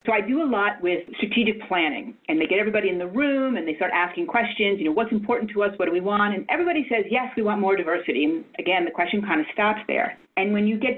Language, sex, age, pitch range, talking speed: English, female, 40-59, 190-265 Hz, 270 wpm